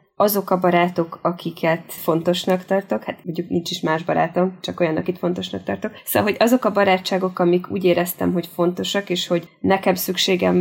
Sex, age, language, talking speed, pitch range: female, 20-39, Hungarian, 175 wpm, 165-190 Hz